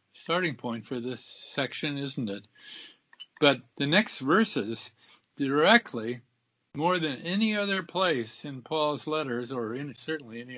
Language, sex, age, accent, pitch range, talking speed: English, male, 50-69, American, 120-160 Hz, 130 wpm